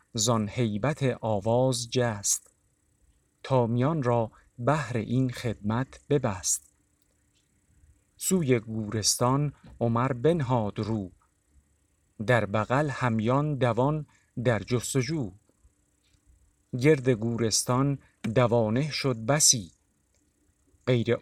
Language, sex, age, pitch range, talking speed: Persian, male, 50-69, 95-130 Hz, 75 wpm